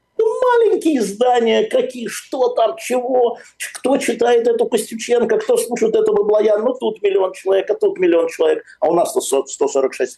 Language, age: Russian, 50-69